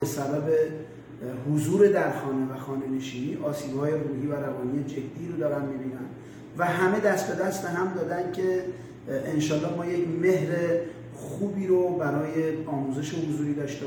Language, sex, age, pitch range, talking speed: Persian, male, 30-49, 145-180 Hz, 140 wpm